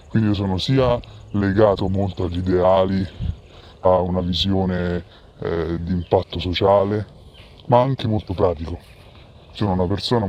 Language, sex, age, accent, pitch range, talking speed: Italian, female, 30-49, native, 90-115 Hz, 130 wpm